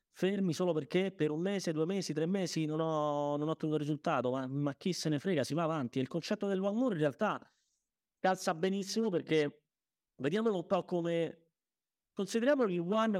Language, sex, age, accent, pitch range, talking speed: Italian, male, 30-49, native, 145-200 Hz, 180 wpm